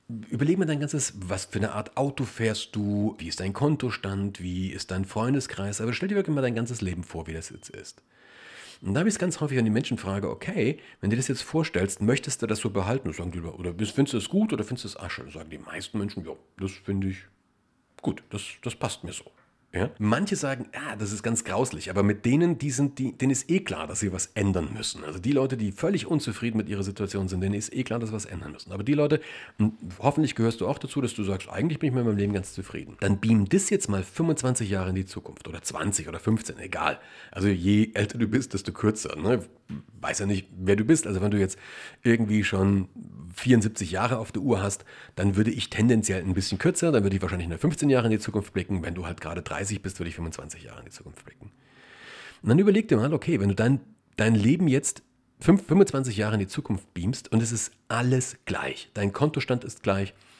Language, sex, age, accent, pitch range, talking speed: German, male, 40-59, German, 95-130 Hz, 240 wpm